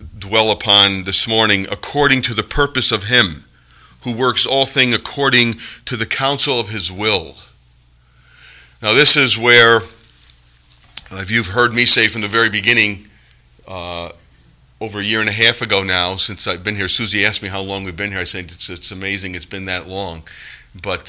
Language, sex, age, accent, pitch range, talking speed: English, male, 40-59, American, 95-125 Hz, 185 wpm